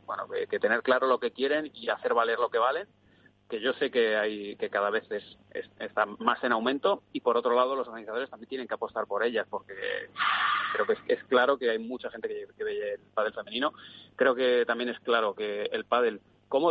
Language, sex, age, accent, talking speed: Spanish, male, 30-49, Spanish, 235 wpm